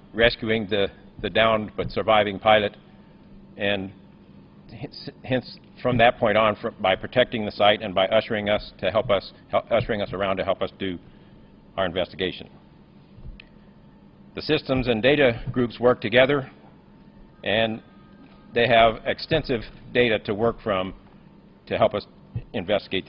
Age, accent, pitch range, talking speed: 50-69, American, 105-130 Hz, 135 wpm